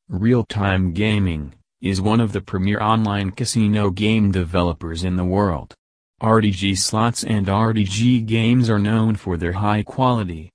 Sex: male